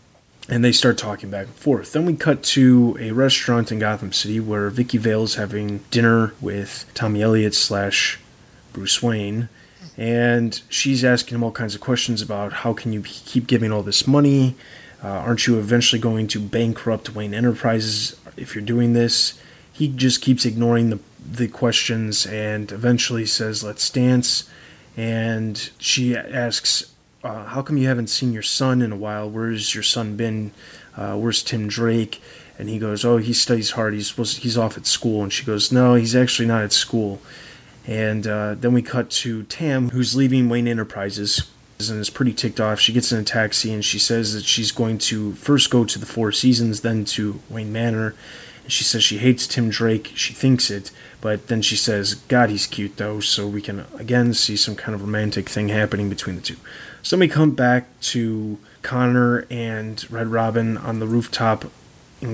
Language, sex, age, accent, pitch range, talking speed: English, male, 20-39, American, 105-125 Hz, 185 wpm